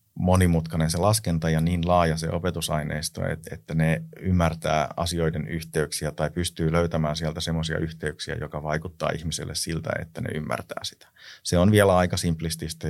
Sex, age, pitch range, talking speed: male, 30-49, 75-85 Hz, 150 wpm